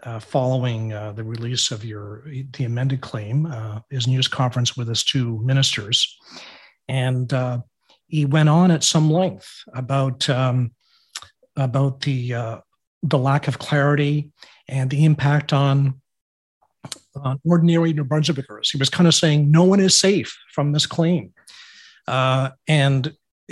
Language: English